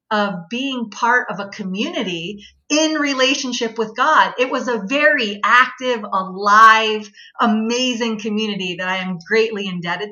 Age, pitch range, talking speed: 30-49, 205-255 Hz, 135 wpm